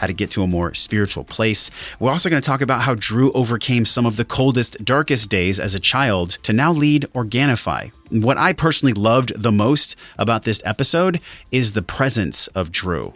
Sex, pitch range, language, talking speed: male, 100-135 Hz, English, 200 wpm